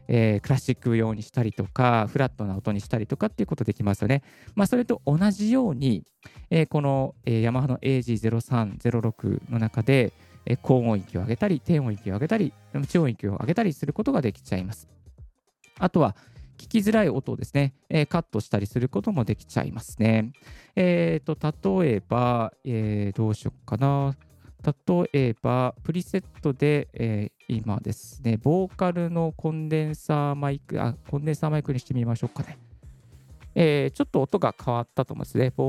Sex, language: male, Japanese